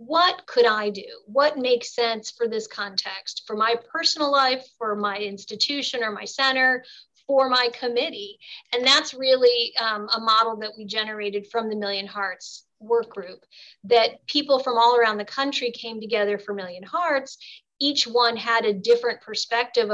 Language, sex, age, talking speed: English, female, 30-49, 170 wpm